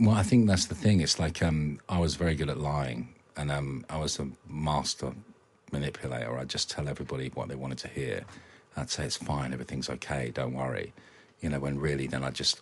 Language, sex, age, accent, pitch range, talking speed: English, male, 40-59, British, 65-75 Hz, 220 wpm